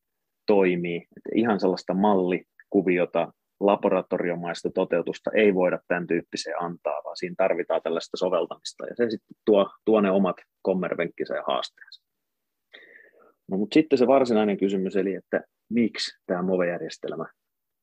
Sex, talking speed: male, 130 wpm